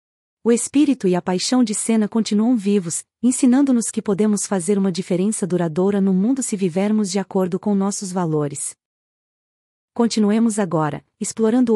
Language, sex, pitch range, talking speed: Portuguese, female, 190-235 Hz, 145 wpm